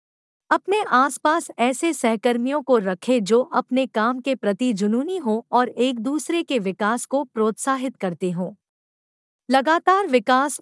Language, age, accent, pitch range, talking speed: Hindi, 50-69, native, 210-290 Hz, 135 wpm